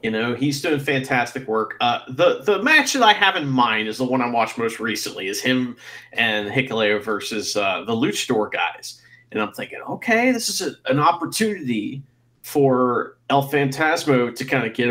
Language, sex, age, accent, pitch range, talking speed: English, male, 40-59, American, 125-165 Hz, 195 wpm